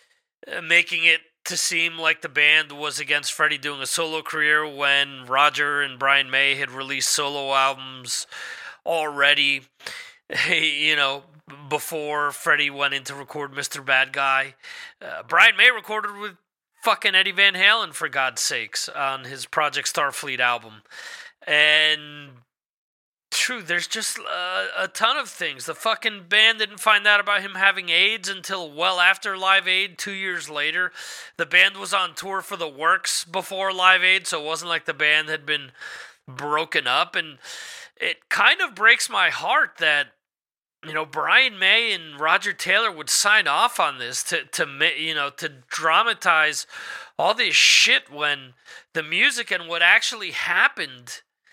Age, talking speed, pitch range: 30-49, 160 wpm, 145-195 Hz